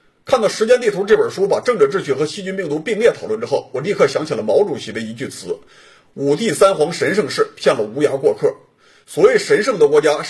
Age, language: 50-69, Chinese